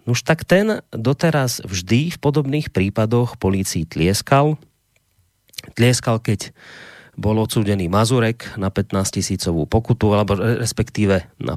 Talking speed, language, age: 110 wpm, Slovak, 30-49